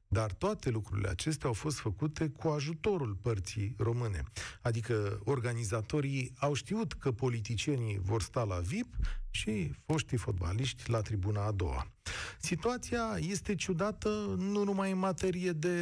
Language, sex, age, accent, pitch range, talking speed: Romanian, male, 40-59, native, 105-160 Hz, 135 wpm